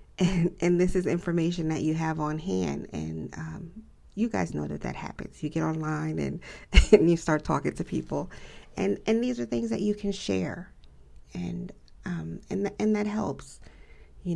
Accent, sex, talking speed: American, female, 190 wpm